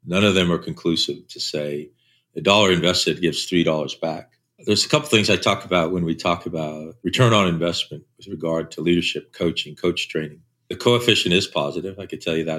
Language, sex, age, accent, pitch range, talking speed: English, male, 50-69, American, 85-120 Hz, 205 wpm